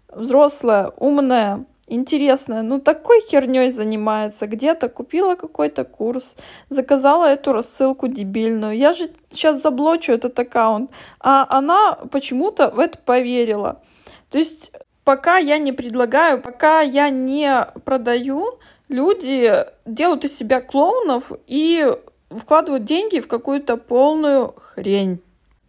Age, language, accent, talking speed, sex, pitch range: 20-39, Russian, native, 115 wpm, female, 245-300 Hz